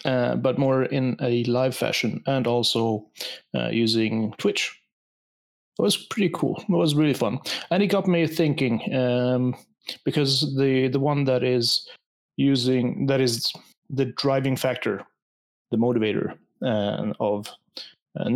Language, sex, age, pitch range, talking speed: English, male, 30-49, 115-135 Hz, 140 wpm